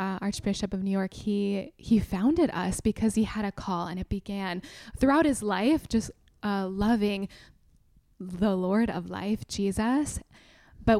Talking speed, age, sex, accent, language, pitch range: 160 wpm, 10-29, female, American, English, 190-220 Hz